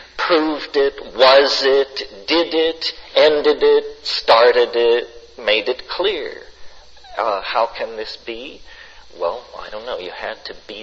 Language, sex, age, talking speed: English, male, 50-69, 145 wpm